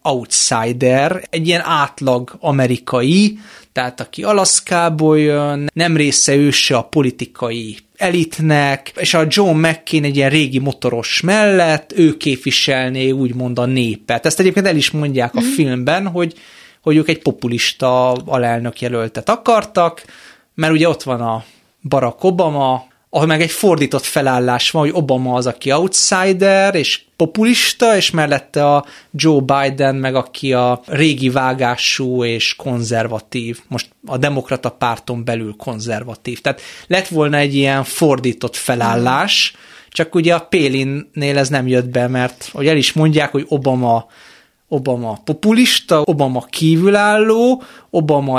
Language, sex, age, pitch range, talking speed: Hungarian, male, 30-49, 125-165 Hz, 135 wpm